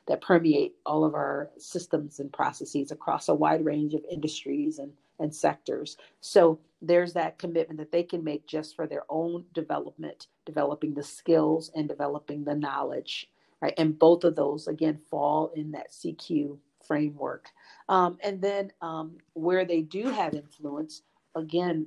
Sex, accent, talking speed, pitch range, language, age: female, American, 160 wpm, 155-175 Hz, English, 40-59